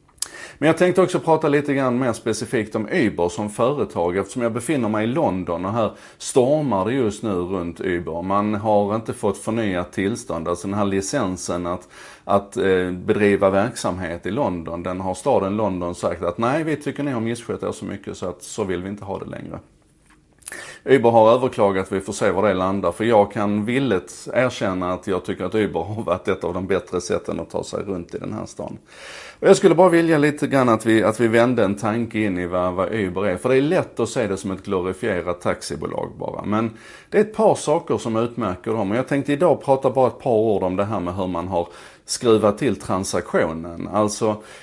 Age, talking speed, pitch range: 30-49, 215 wpm, 90-115 Hz